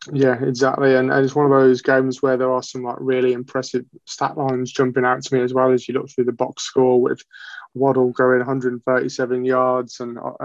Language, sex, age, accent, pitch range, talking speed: English, male, 20-39, British, 125-135 Hz, 220 wpm